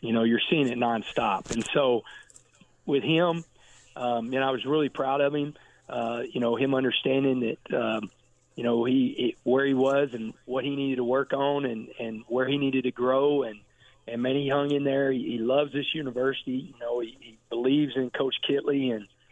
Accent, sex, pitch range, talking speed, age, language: American, male, 125-145 Hz, 205 wpm, 40-59, English